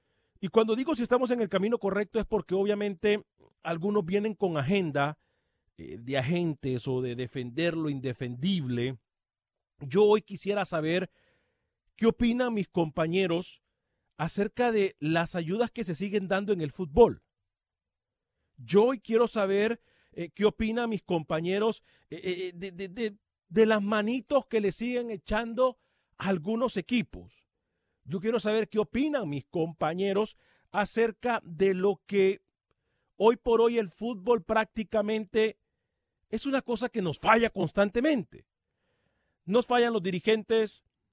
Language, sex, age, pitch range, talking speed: Spanish, male, 40-59, 165-225 Hz, 135 wpm